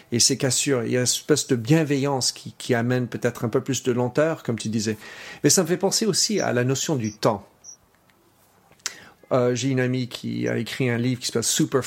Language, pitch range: French, 120-140 Hz